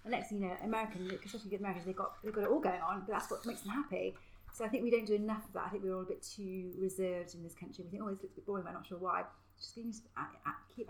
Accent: British